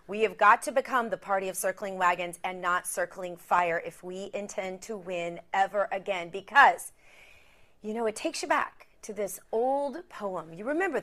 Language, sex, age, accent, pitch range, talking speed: English, female, 40-59, American, 190-255 Hz, 185 wpm